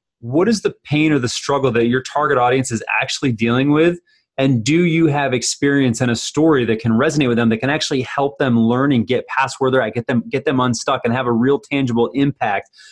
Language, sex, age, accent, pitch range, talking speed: English, male, 30-49, American, 120-140 Hz, 230 wpm